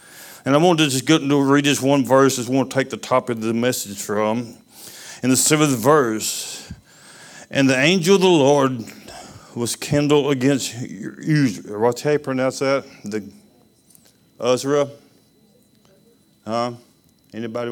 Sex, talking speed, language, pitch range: male, 150 wpm, English, 110-135 Hz